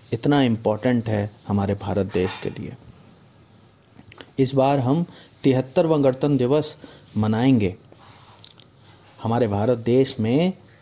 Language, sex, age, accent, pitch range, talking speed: Hindi, male, 30-49, native, 105-135 Hz, 105 wpm